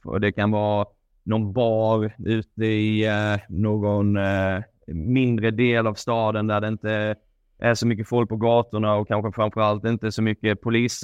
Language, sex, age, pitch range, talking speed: Swedish, male, 20-39, 100-115 Hz, 170 wpm